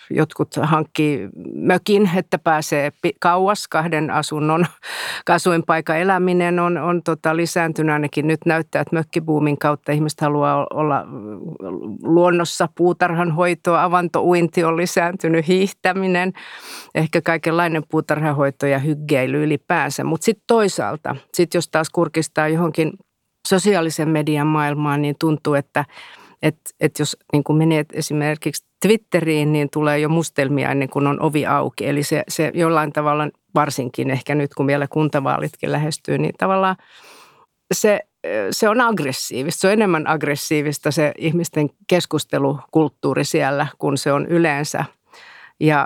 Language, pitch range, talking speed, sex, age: Finnish, 150-175 Hz, 125 wpm, female, 50-69